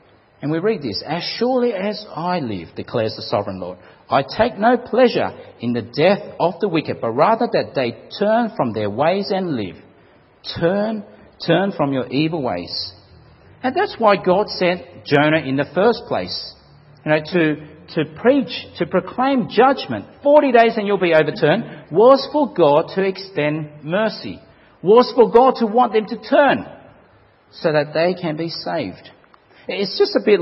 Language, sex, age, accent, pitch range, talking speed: English, male, 50-69, Australian, 130-215 Hz, 170 wpm